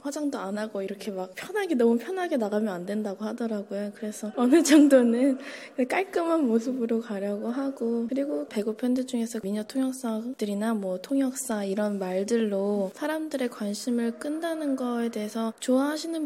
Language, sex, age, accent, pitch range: Korean, female, 20-39, native, 210-255 Hz